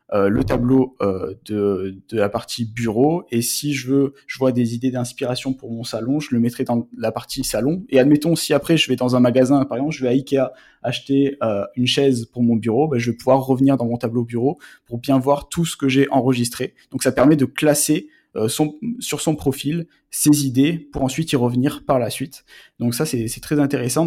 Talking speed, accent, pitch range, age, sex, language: 220 wpm, French, 125-145 Hz, 20-39, male, French